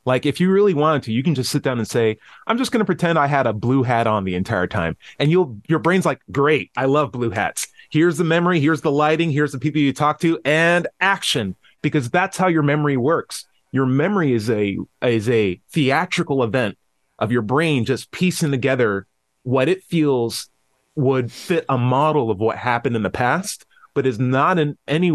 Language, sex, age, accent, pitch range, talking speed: English, male, 30-49, American, 115-160 Hz, 210 wpm